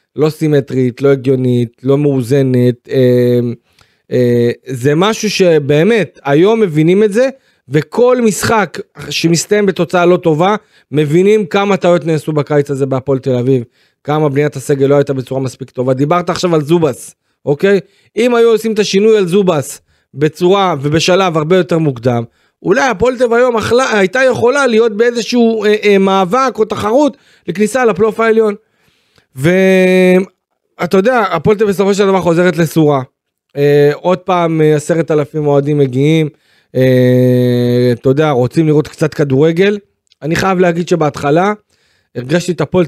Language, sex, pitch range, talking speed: Hebrew, male, 140-190 Hz, 145 wpm